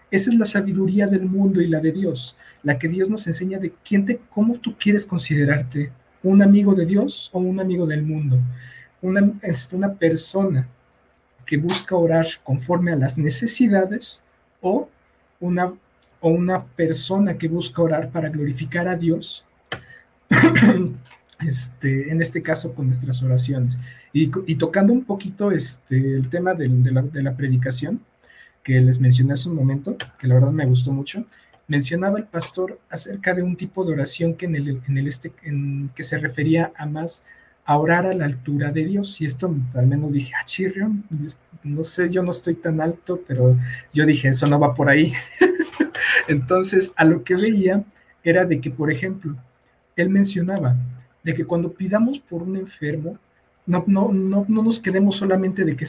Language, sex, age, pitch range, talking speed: Spanish, male, 50-69, 145-190 Hz, 180 wpm